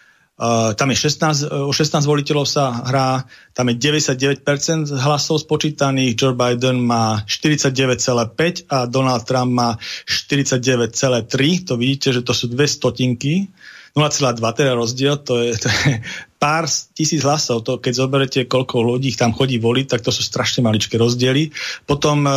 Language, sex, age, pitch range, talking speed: Slovak, male, 40-59, 125-145 Hz, 155 wpm